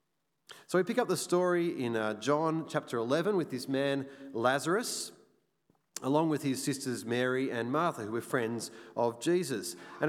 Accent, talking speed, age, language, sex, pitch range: Australian, 165 wpm, 30-49, English, male, 130-175 Hz